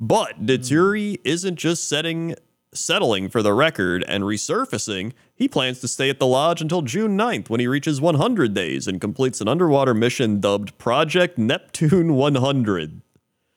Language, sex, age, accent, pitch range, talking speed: English, male, 30-49, American, 110-150 Hz, 155 wpm